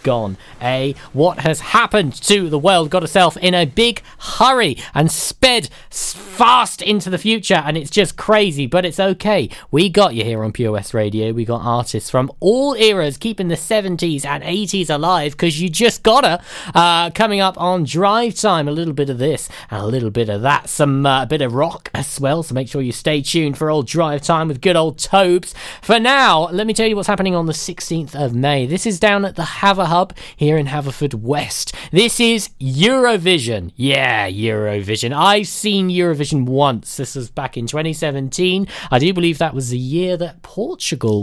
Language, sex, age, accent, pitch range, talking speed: English, male, 20-39, British, 135-195 Hz, 200 wpm